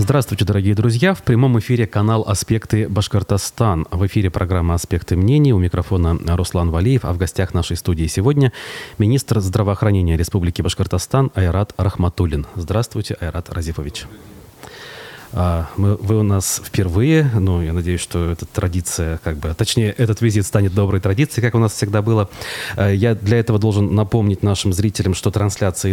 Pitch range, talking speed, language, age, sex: 90-110 Hz, 150 wpm, Russian, 30-49, male